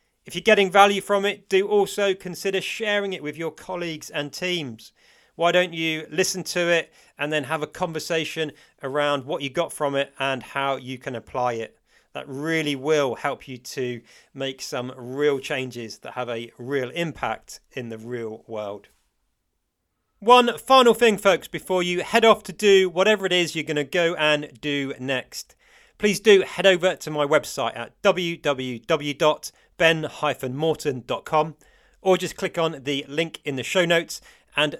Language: English